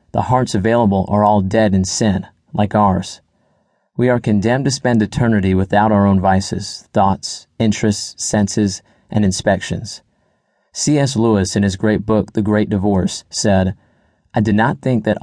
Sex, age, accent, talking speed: male, 30-49, American, 160 wpm